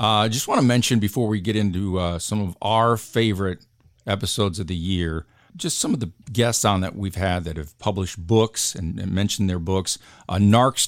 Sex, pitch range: male, 100-120 Hz